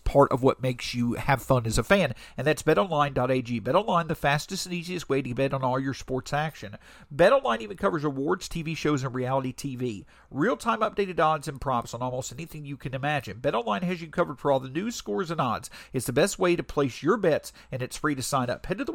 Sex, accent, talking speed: male, American, 235 wpm